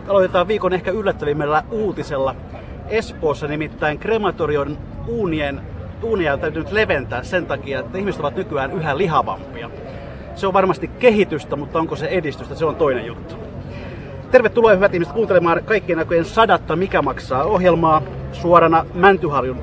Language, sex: Finnish, male